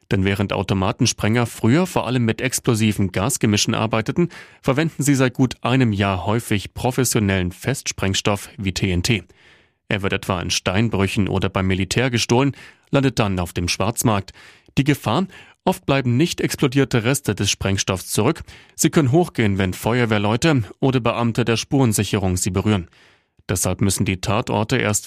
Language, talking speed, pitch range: German, 145 wpm, 100-135 Hz